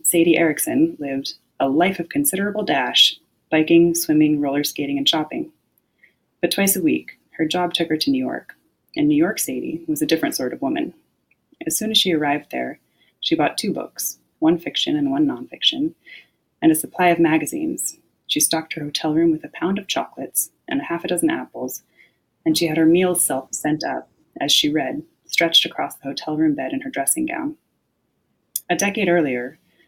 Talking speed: 190 wpm